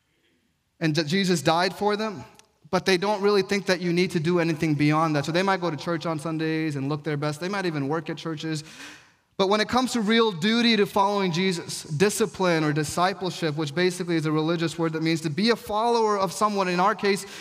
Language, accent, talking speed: English, American, 230 wpm